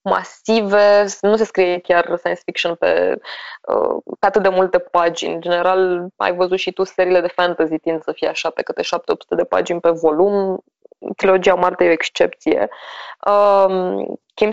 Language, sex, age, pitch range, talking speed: Romanian, female, 20-39, 175-210 Hz, 160 wpm